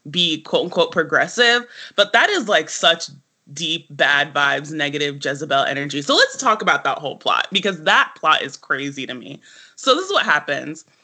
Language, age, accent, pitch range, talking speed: English, 20-39, American, 145-185 Hz, 180 wpm